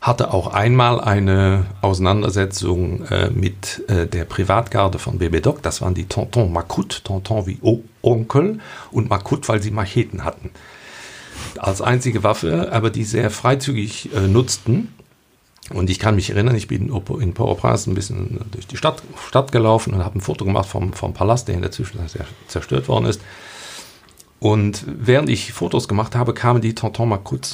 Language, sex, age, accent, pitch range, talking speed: German, male, 50-69, German, 95-120 Hz, 175 wpm